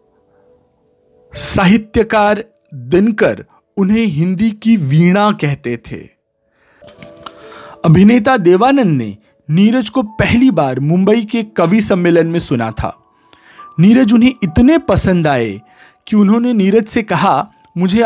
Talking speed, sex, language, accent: 110 wpm, male, Hindi, native